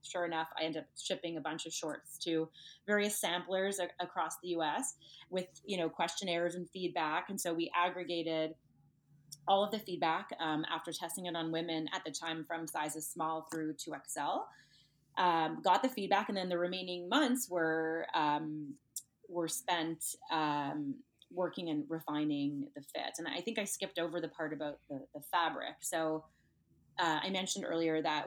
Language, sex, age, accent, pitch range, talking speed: English, female, 30-49, American, 150-180 Hz, 170 wpm